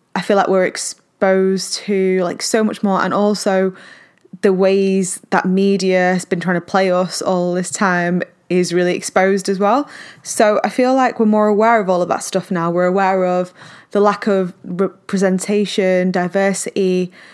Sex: female